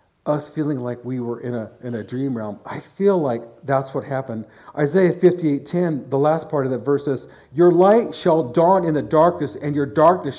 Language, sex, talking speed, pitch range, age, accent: English, male, 220 wpm, 140-180 Hz, 50-69, American